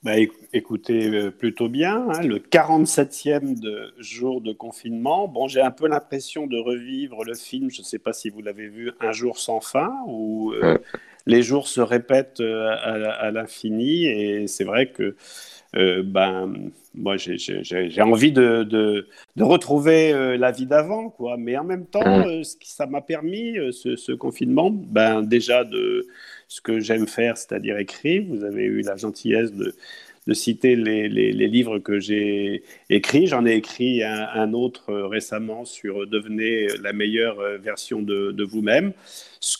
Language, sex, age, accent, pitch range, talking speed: French, male, 50-69, French, 110-140 Hz, 180 wpm